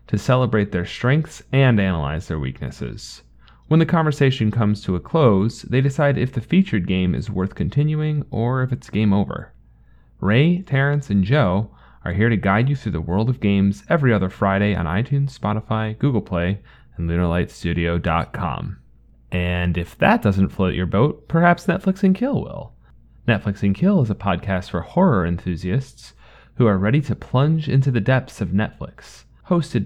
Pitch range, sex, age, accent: 95-130 Hz, male, 30-49, American